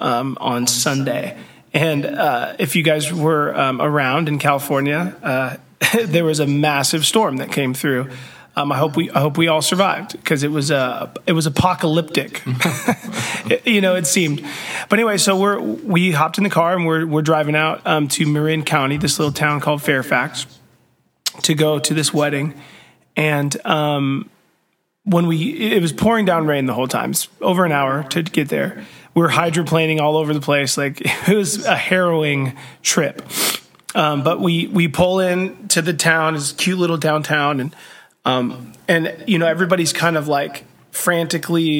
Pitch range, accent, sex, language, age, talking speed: 145-175 Hz, American, male, English, 30-49, 180 wpm